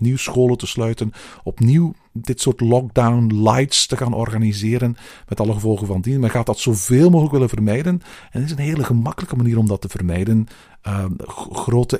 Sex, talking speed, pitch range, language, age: male, 190 wpm, 100-130 Hz, Dutch, 50-69